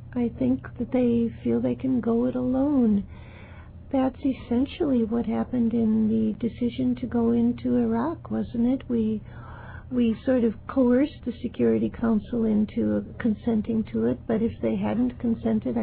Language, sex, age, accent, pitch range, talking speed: English, female, 60-79, American, 215-260 Hz, 150 wpm